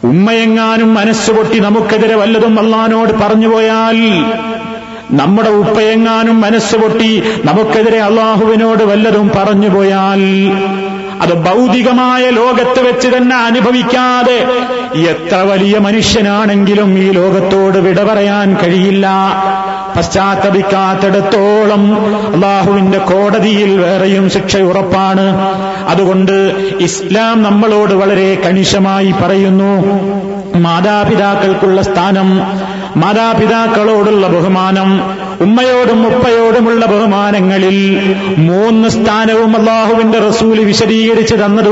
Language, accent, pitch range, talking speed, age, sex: Malayalam, native, 195-220 Hz, 75 wpm, 30-49, male